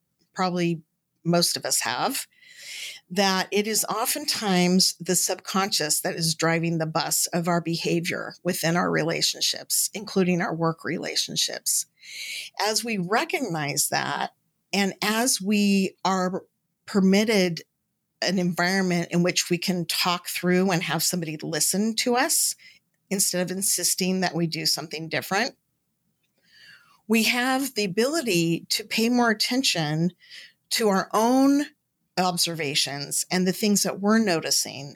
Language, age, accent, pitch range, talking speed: English, 50-69, American, 170-220 Hz, 130 wpm